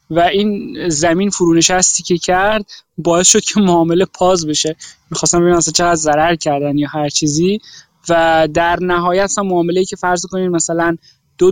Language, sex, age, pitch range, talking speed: Persian, male, 20-39, 160-195 Hz, 160 wpm